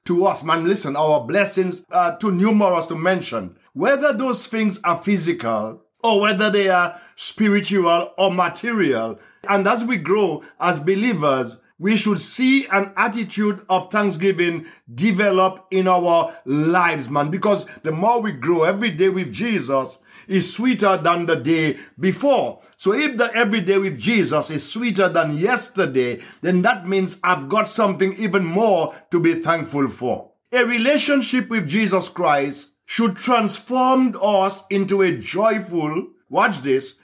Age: 50-69